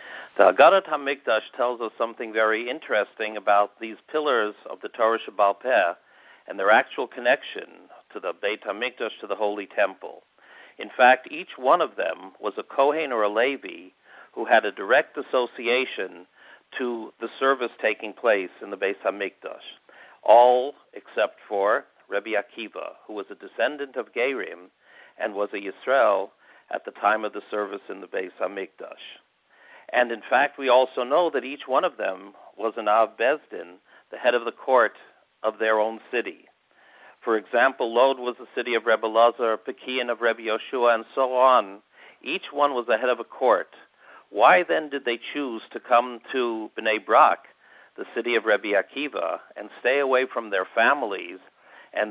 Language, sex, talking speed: English, male, 170 wpm